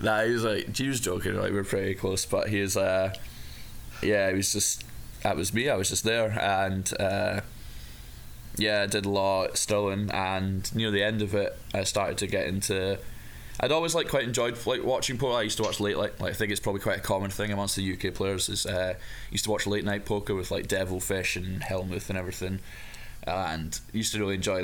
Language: English